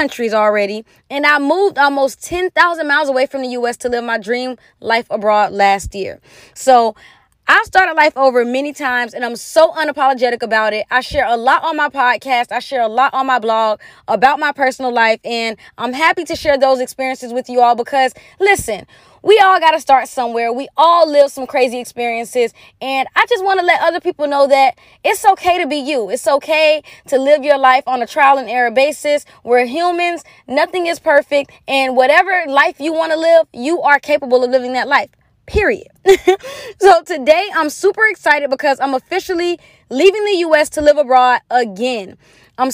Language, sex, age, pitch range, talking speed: Amharic, female, 20-39, 250-330 Hz, 190 wpm